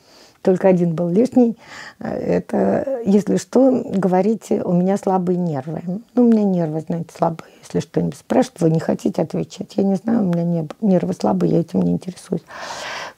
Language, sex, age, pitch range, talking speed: Russian, female, 50-69, 170-205 Hz, 165 wpm